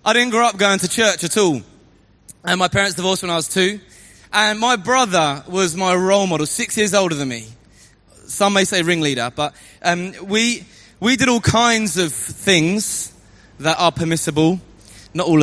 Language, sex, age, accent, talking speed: English, male, 20-39, British, 185 wpm